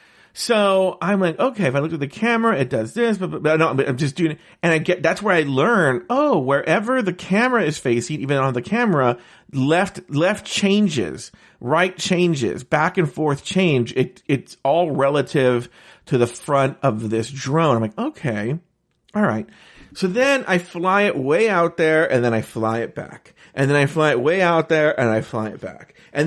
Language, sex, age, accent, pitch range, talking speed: English, male, 40-59, American, 145-220 Hz, 205 wpm